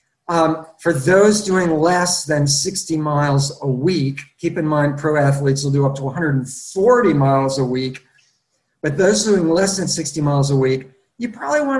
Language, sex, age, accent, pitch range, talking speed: English, male, 50-69, American, 140-170 Hz, 180 wpm